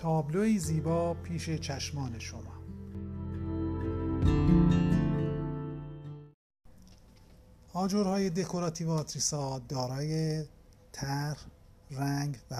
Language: Persian